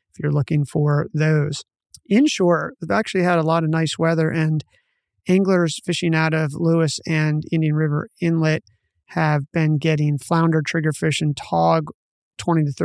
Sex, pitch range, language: male, 155-185 Hz, English